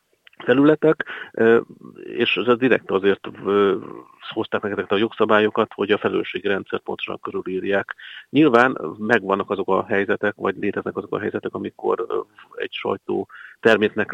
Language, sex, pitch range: Hungarian, male, 100-155 Hz